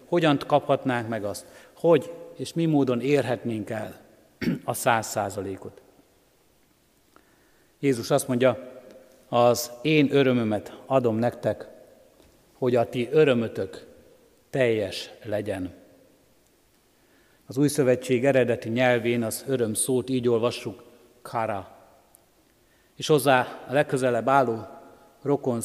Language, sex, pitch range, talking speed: Hungarian, male, 115-135 Hz, 105 wpm